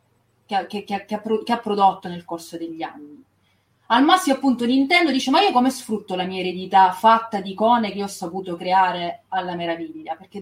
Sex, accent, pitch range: female, native, 180-245 Hz